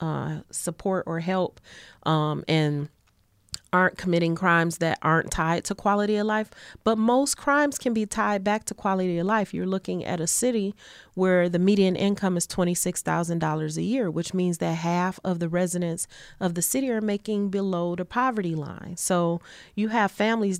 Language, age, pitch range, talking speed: English, 30-49, 165-195 Hz, 175 wpm